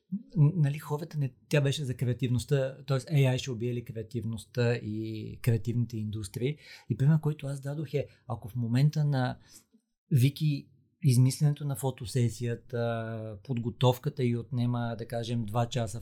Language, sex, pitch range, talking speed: Bulgarian, male, 115-135 Hz, 135 wpm